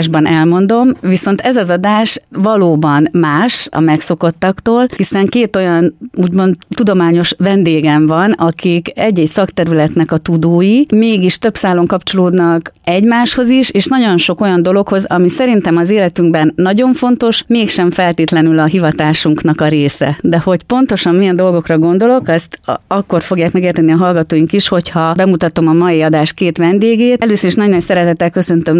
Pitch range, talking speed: 155-190 Hz, 145 wpm